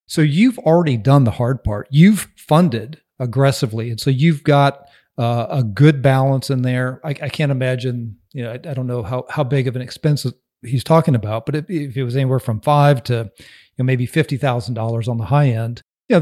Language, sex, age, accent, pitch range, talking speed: English, male, 40-59, American, 120-140 Hz, 220 wpm